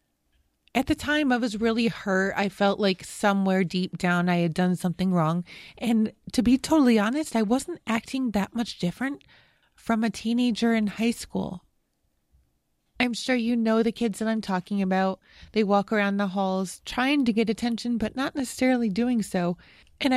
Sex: female